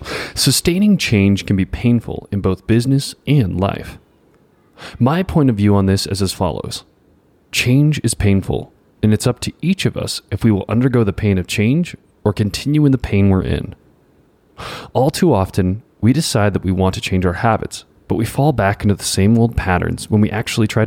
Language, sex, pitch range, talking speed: English, male, 100-130 Hz, 200 wpm